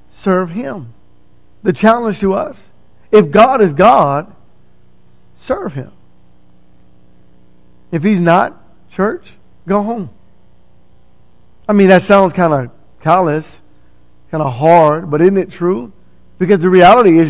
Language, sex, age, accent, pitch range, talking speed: English, male, 50-69, American, 140-205 Hz, 125 wpm